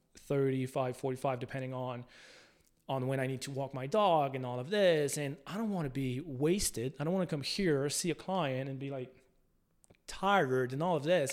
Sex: male